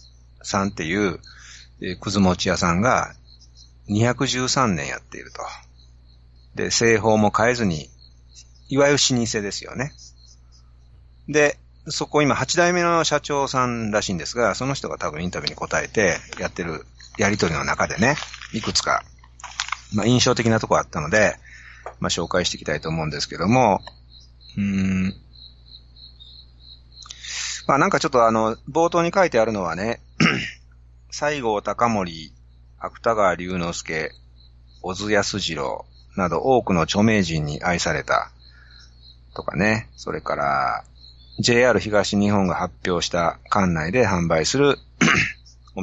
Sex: male